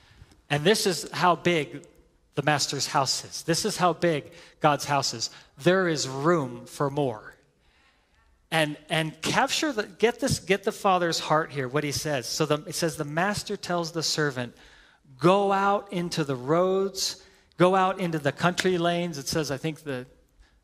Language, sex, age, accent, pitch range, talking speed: English, male, 40-59, American, 140-175 Hz, 175 wpm